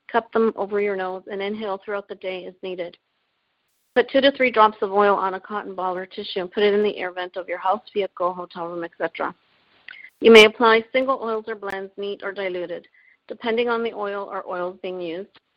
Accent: American